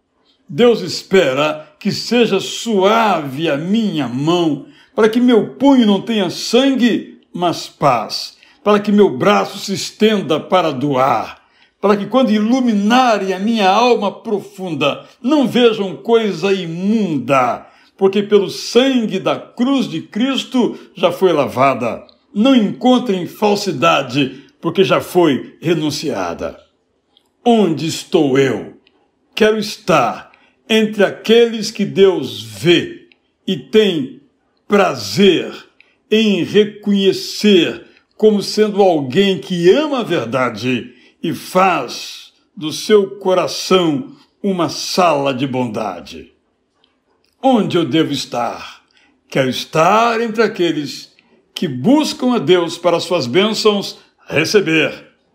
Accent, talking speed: Brazilian, 110 wpm